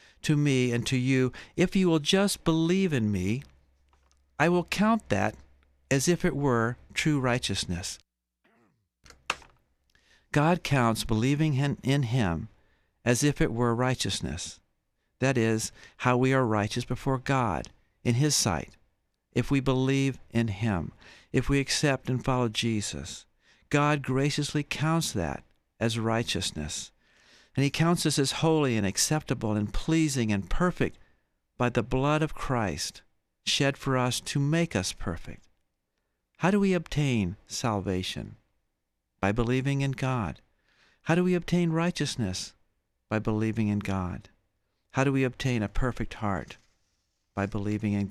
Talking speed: 140 wpm